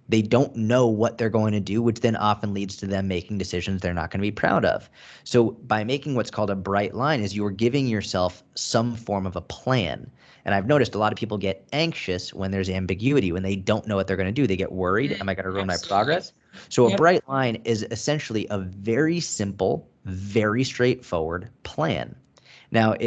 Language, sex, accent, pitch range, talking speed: English, male, American, 100-130 Hz, 220 wpm